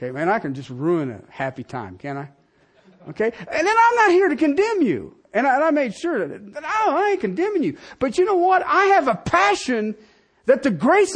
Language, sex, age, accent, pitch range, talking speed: English, male, 40-59, American, 270-385 Hz, 230 wpm